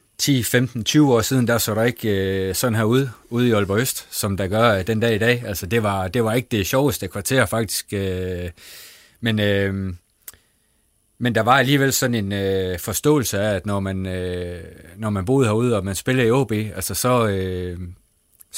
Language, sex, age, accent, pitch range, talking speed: Danish, male, 30-49, native, 95-120 Hz, 200 wpm